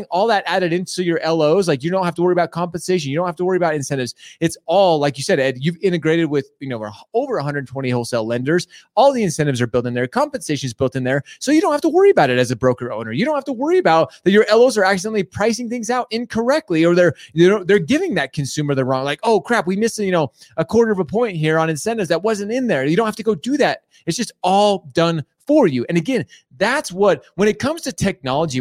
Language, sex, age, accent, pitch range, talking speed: English, male, 30-49, American, 145-210 Hz, 265 wpm